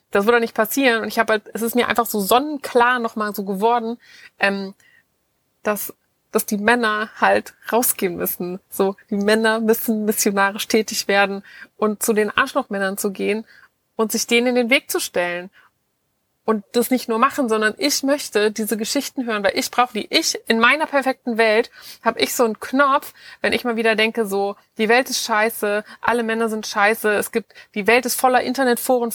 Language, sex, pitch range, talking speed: German, female, 210-245 Hz, 190 wpm